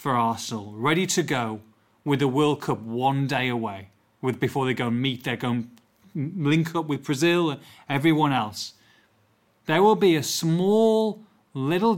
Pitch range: 120-165 Hz